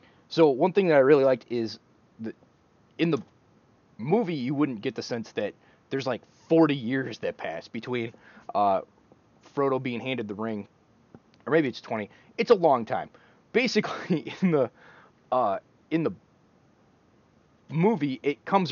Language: English